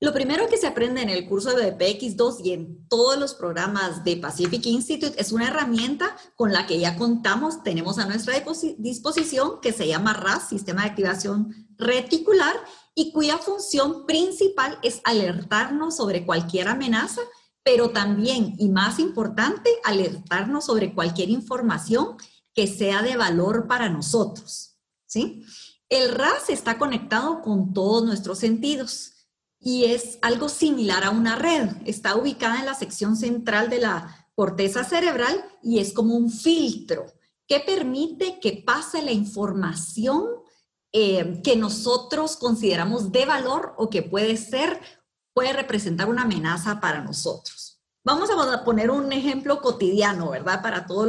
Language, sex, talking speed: Spanish, female, 145 wpm